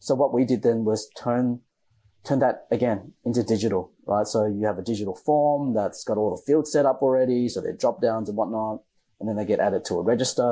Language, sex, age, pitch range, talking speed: English, male, 30-49, 100-130 Hz, 230 wpm